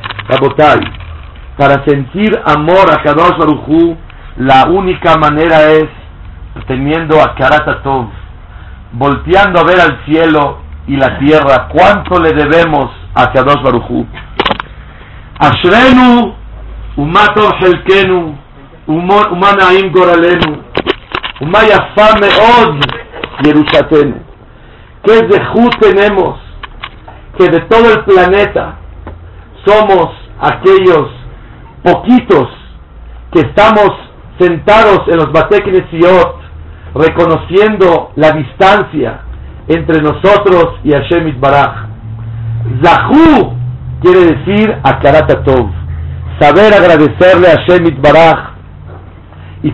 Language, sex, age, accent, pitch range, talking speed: Spanish, male, 50-69, Mexican, 120-185 Hz, 85 wpm